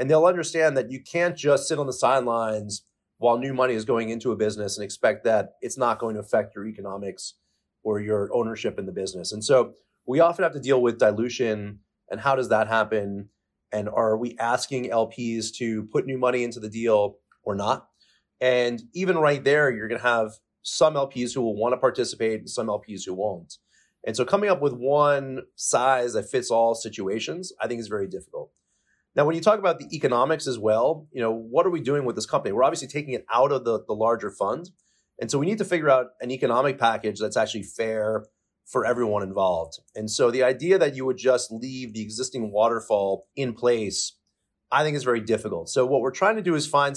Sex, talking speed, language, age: male, 215 wpm, English, 30-49